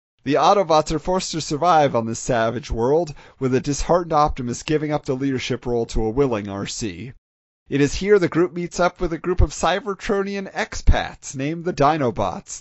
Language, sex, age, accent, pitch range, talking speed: English, male, 40-59, American, 120-160 Hz, 185 wpm